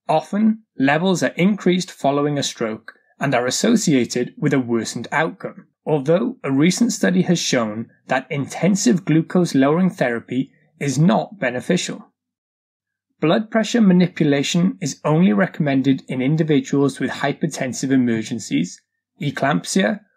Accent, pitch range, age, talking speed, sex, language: British, 135-185 Hz, 20-39, 115 wpm, male, English